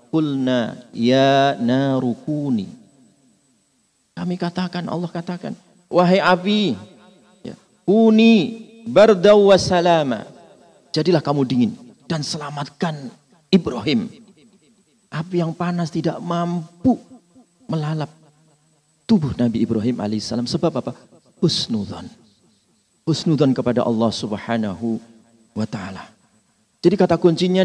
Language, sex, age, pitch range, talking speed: Indonesian, male, 40-59, 150-205 Hz, 85 wpm